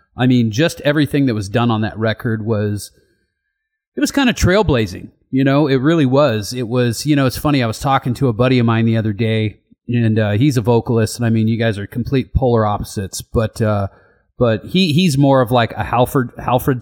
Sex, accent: male, American